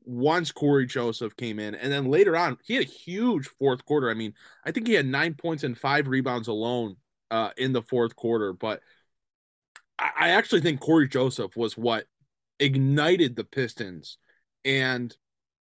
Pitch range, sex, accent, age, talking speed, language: 125-155 Hz, male, American, 20-39, 175 wpm, English